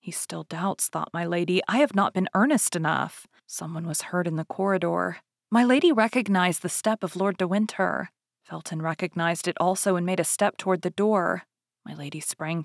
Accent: American